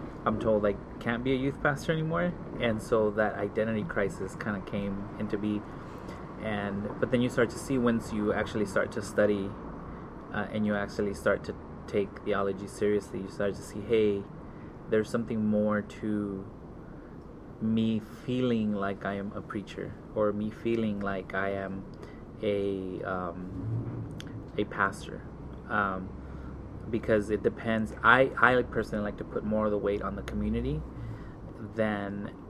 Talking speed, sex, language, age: 155 wpm, male, English, 20-39